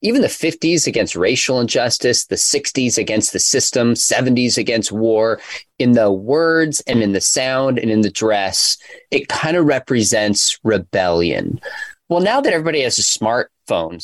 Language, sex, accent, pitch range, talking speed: English, male, American, 110-170 Hz, 160 wpm